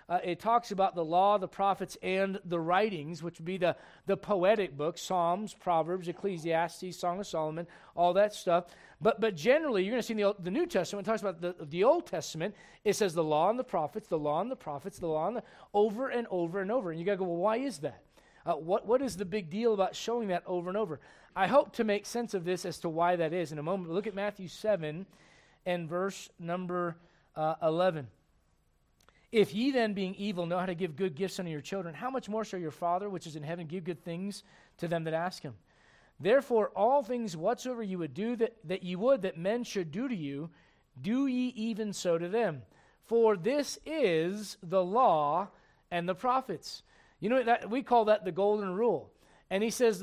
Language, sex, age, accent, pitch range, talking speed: English, male, 40-59, American, 170-215 Hz, 225 wpm